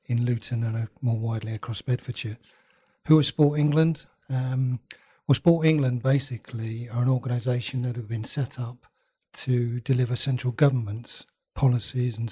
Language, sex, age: English, male, 40-59